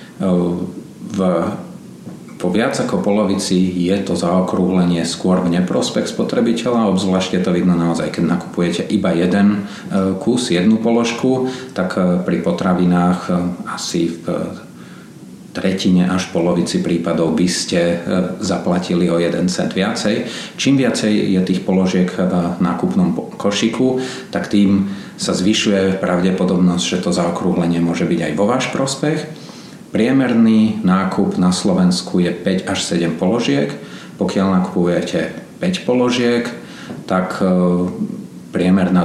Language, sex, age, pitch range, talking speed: Slovak, male, 40-59, 90-100 Hz, 115 wpm